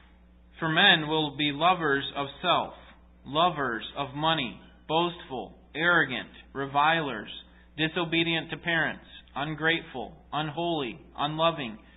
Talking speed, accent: 95 wpm, American